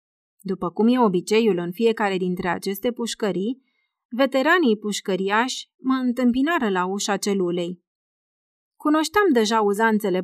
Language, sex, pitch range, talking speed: Romanian, female, 190-240 Hz, 110 wpm